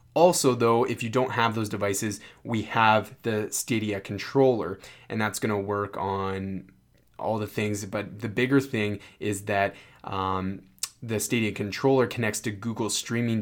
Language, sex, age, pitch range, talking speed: English, male, 20-39, 105-125 Hz, 155 wpm